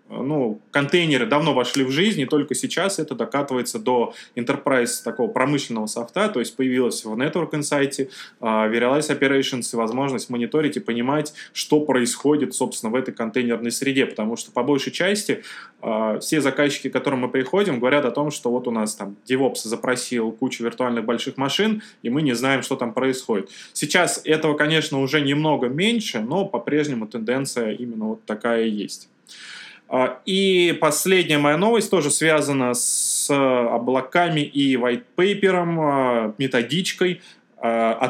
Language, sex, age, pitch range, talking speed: Russian, male, 20-39, 125-155 Hz, 150 wpm